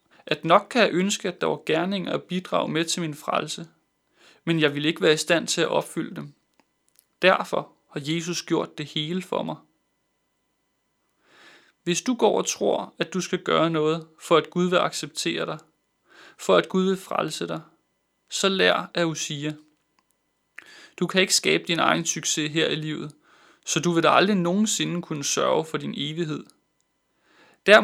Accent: native